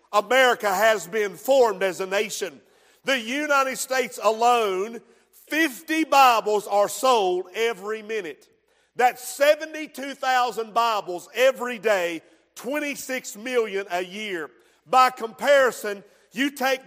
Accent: American